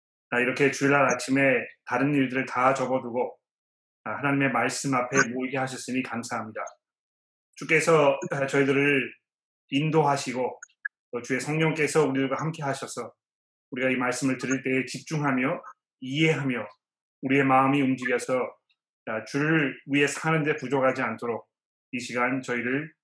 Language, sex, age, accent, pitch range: Korean, male, 30-49, native, 130-165 Hz